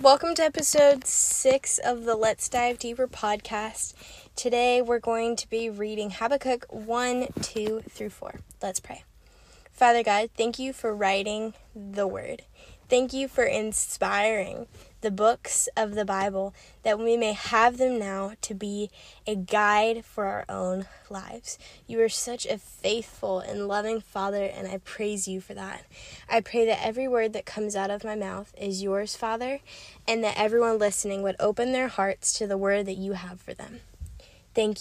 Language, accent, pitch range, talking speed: English, American, 200-235 Hz, 170 wpm